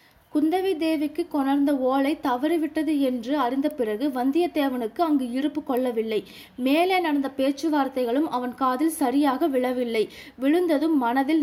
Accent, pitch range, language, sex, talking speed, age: native, 250-300 Hz, Tamil, female, 110 wpm, 20-39